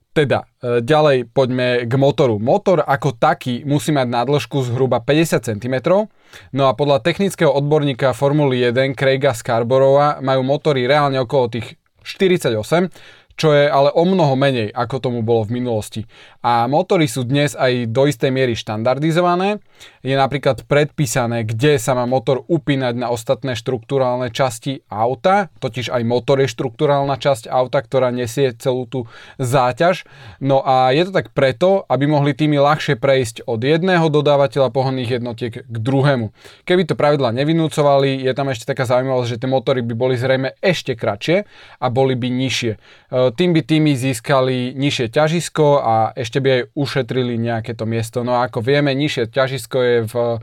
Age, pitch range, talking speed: 20-39, 120-145 Hz, 160 wpm